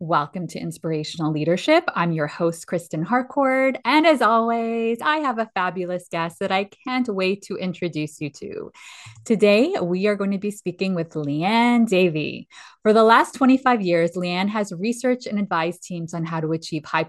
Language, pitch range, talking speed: English, 170-230 Hz, 180 wpm